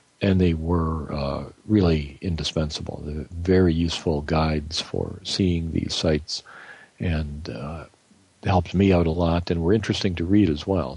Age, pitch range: 50-69, 80-100 Hz